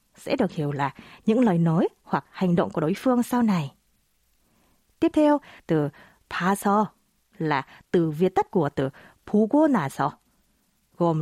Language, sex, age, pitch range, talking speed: Vietnamese, female, 20-39, 170-245 Hz, 135 wpm